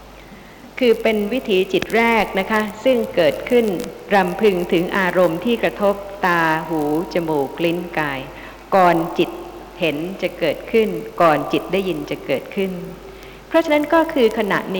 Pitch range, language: 180-230 Hz, Thai